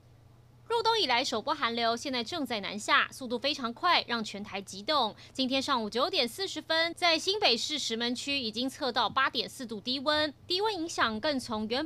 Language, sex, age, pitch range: Chinese, female, 30-49, 220-310 Hz